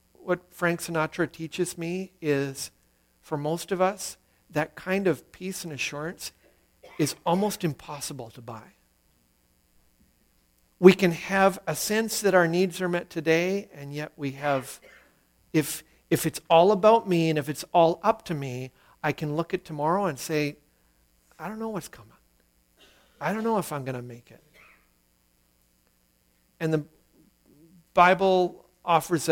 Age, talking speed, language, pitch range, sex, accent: 50-69, 150 wpm, English, 125-180 Hz, male, American